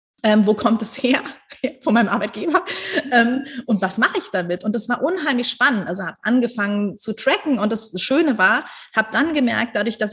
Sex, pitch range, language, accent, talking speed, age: female, 210-255 Hz, German, German, 195 wpm, 30-49